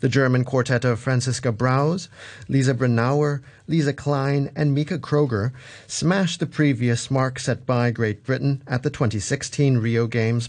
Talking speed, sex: 150 wpm, male